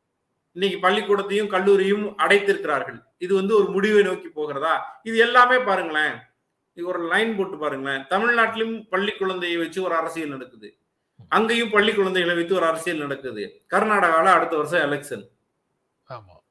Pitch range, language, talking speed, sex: 175-215 Hz, Tamil, 105 wpm, male